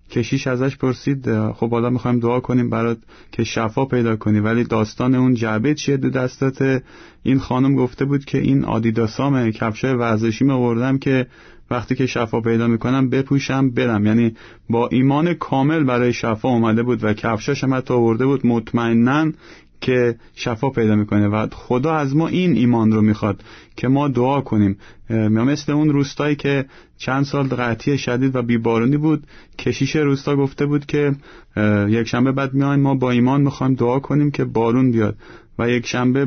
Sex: male